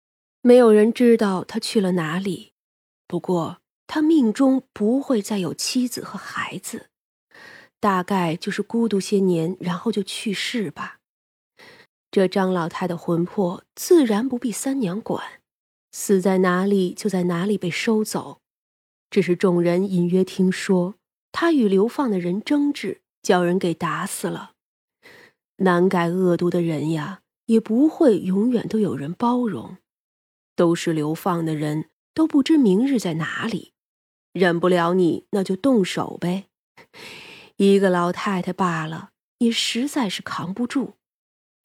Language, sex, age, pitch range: Chinese, female, 20-39, 180-235 Hz